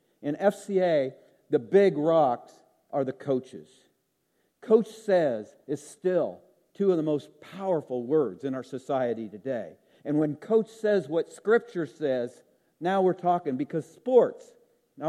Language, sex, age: English, male, 50-69